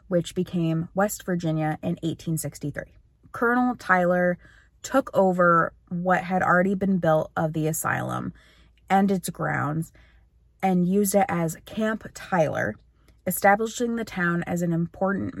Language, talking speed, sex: English, 130 wpm, female